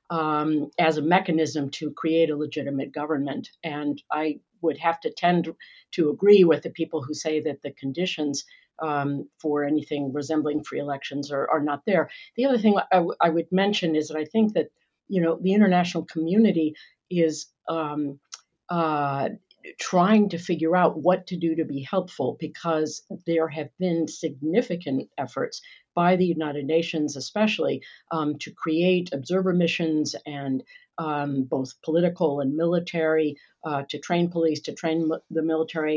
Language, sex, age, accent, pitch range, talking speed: English, female, 50-69, American, 150-170 Hz, 160 wpm